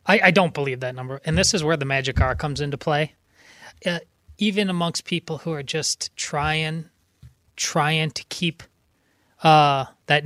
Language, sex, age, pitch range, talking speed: English, male, 20-39, 150-205 Hz, 170 wpm